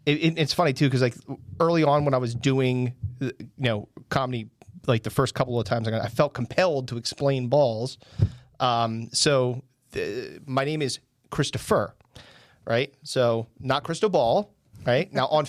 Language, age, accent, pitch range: English, 40-59, American, 120-140 Hz